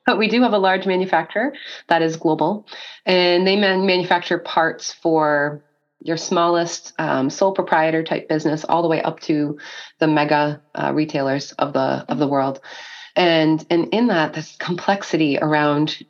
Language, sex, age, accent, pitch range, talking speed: English, female, 30-49, American, 150-175 Hz, 165 wpm